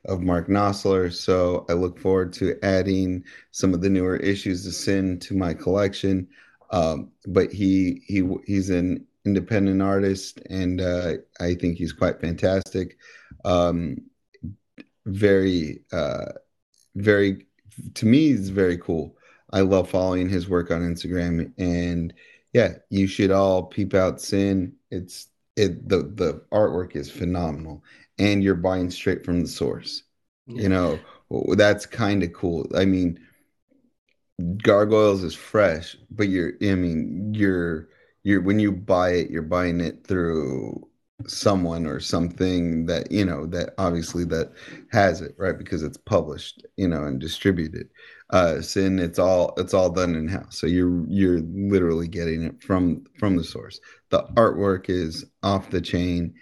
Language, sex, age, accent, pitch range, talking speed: English, male, 30-49, American, 85-95 Hz, 150 wpm